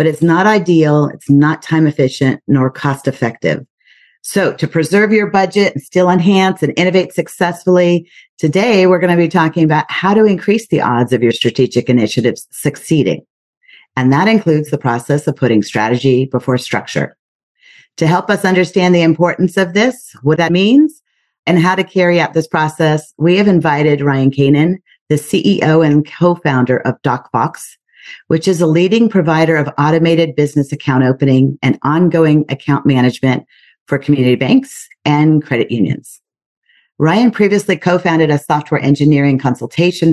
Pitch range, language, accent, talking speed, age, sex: 135-180 Hz, English, American, 155 wpm, 40-59, female